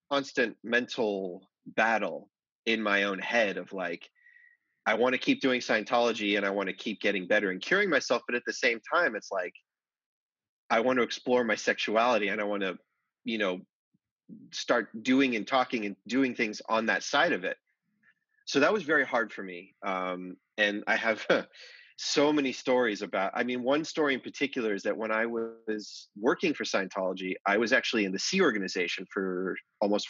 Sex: male